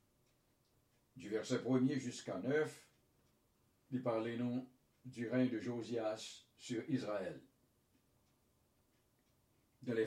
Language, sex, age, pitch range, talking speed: English, male, 60-79, 110-125 Hz, 90 wpm